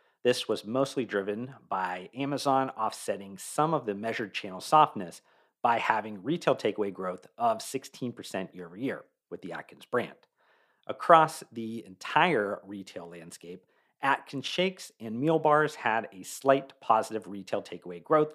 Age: 40-59